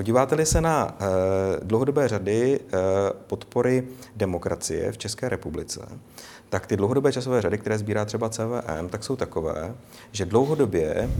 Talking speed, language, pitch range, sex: 140 wpm, Czech, 95-115 Hz, male